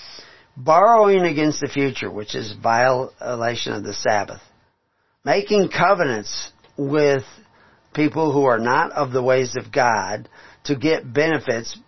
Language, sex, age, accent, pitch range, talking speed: English, male, 40-59, American, 120-160 Hz, 125 wpm